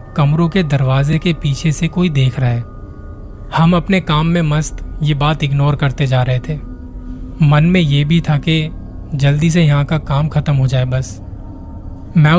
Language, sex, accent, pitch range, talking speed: Hindi, male, native, 130-155 Hz, 185 wpm